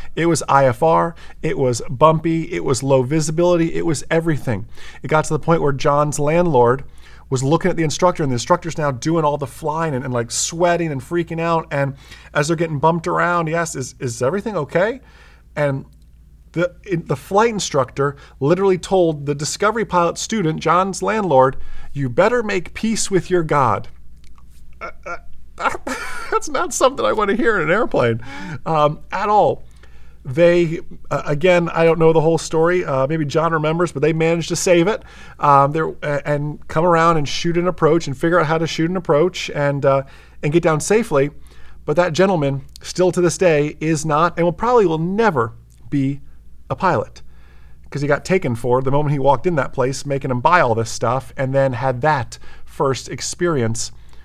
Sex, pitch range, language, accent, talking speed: male, 130-170 Hz, English, American, 185 wpm